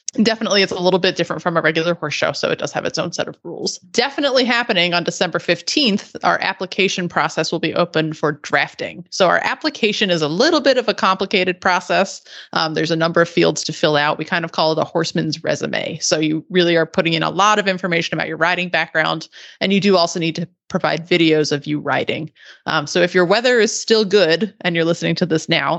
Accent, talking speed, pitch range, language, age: American, 235 wpm, 165-200 Hz, English, 30-49